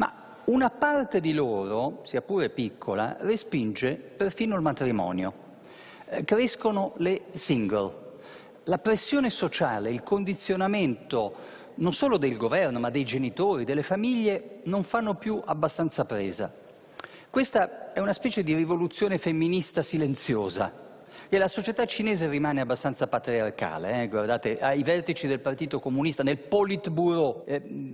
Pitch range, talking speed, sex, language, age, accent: 125-190 Hz, 120 wpm, male, Italian, 50-69, native